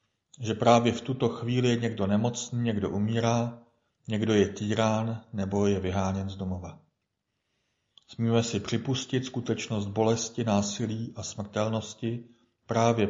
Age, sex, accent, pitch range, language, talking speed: 40-59, male, native, 100-120 Hz, Czech, 125 wpm